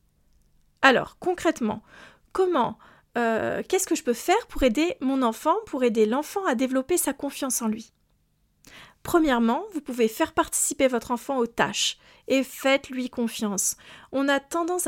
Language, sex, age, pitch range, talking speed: French, female, 40-59, 235-310 Hz, 150 wpm